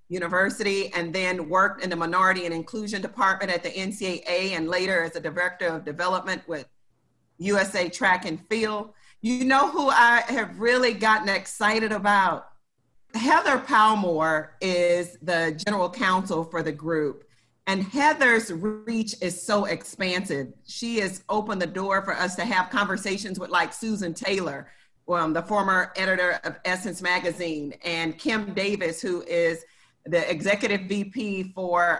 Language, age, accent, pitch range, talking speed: English, 40-59, American, 175-210 Hz, 150 wpm